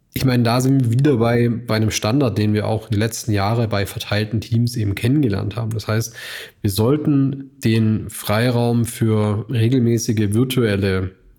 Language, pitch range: German, 105-120 Hz